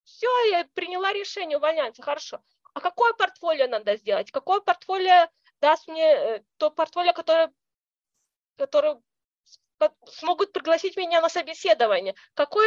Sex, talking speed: female, 120 wpm